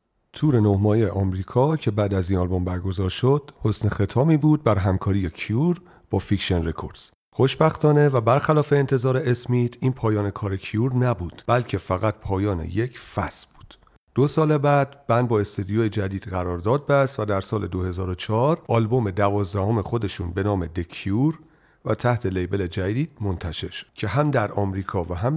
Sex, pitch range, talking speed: male, 95-125 Hz, 160 wpm